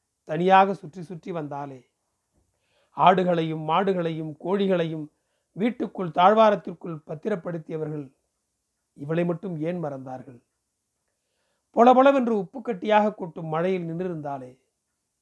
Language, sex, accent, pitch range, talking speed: Tamil, male, native, 160-200 Hz, 75 wpm